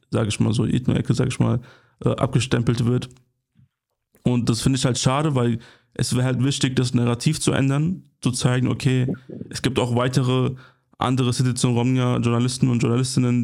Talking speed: 175 wpm